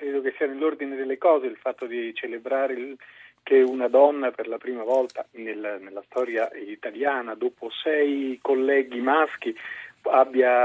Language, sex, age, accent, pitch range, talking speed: Italian, male, 40-59, native, 125-160 Hz, 140 wpm